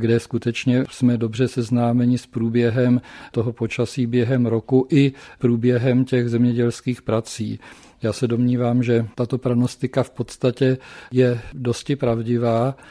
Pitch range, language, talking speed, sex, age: 120-130 Hz, Czech, 125 wpm, male, 40-59